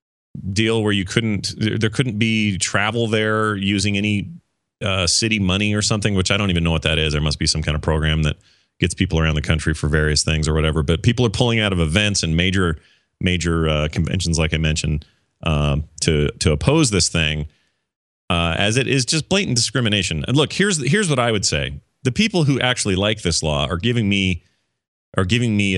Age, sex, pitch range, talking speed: 30-49, male, 80-125 Hz, 210 wpm